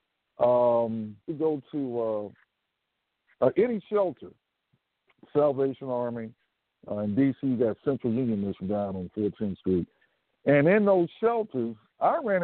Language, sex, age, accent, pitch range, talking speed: English, male, 60-79, American, 110-150 Hz, 130 wpm